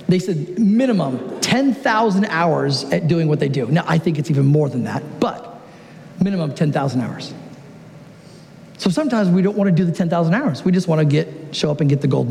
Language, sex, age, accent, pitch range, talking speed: English, male, 40-59, American, 165-205 Hz, 210 wpm